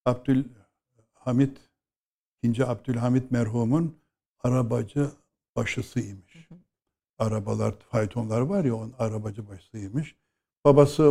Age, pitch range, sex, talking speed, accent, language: 60-79, 115-140 Hz, male, 70 wpm, native, Turkish